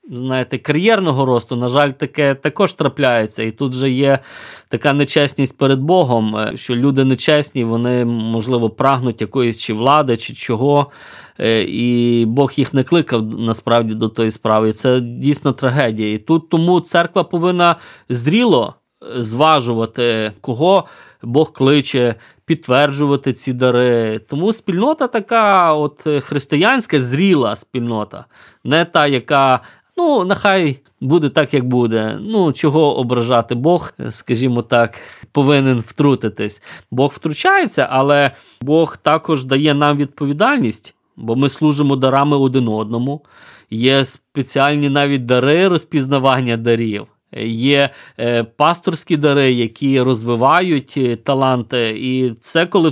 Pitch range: 120-155 Hz